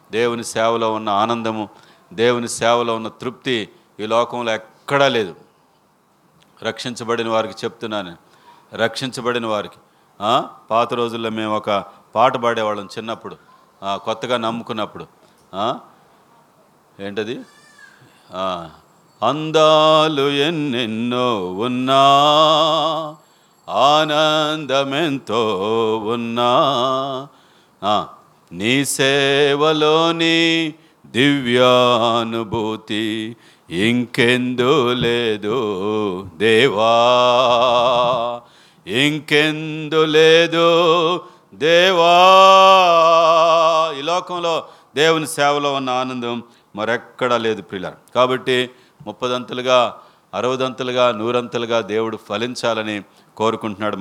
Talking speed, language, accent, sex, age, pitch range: 65 wpm, Telugu, native, male, 40-59, 110-145 Hz